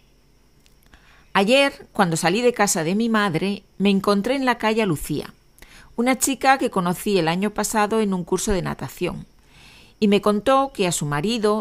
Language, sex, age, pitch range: Spanish, female, 40-59, 180-220 Hz